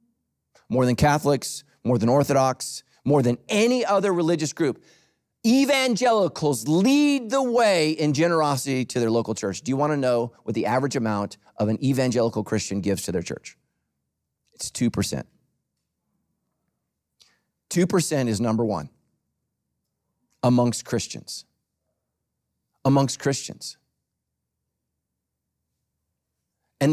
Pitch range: 125-185 Hz